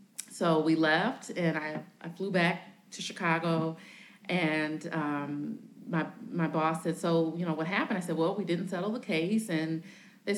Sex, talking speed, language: female, 180 wpm, English